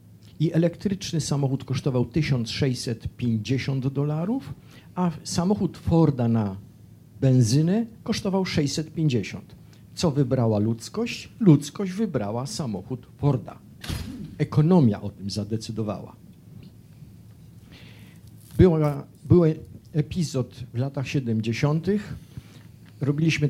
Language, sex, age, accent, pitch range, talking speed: Polish, male, 50-69, native, 115-155 Hz, 80 wpm